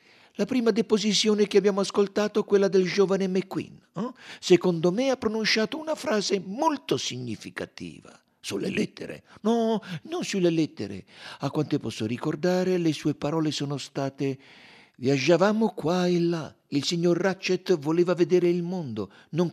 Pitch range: 145-215 Hz